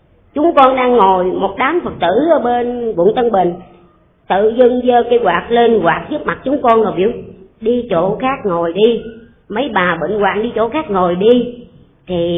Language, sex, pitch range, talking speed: Vietnamese, male, 180-240 Hz, 200 wpm